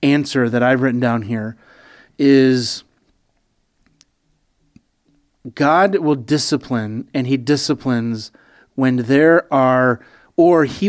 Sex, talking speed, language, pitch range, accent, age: male, 100 wpm, English, 120-140 Hz, American, 30-49